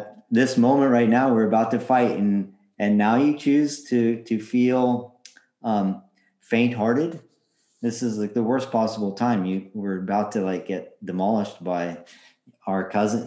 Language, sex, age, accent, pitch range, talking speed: English, male, 40-59, American, 95-115 Hz, 165 wpm